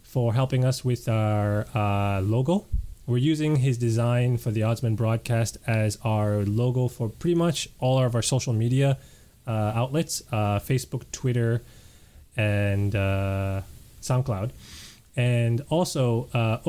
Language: English